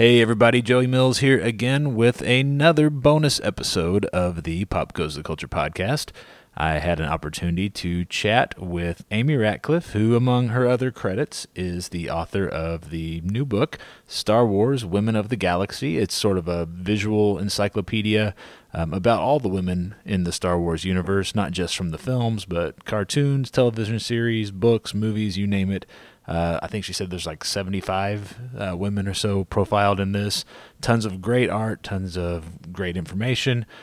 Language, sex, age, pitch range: English, male, 30-49, 90-115 Hz